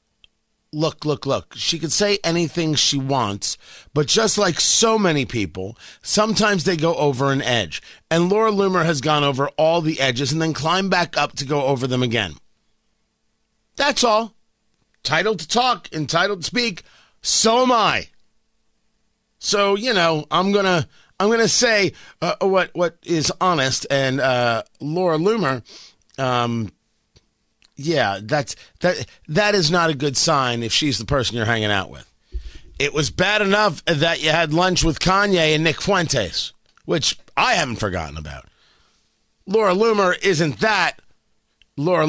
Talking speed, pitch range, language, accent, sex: 155 wpm, 130-185 Hz, English, American, male